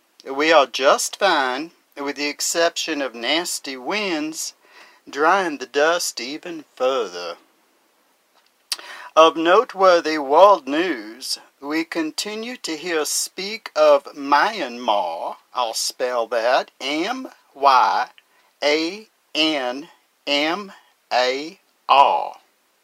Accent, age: American, 50-69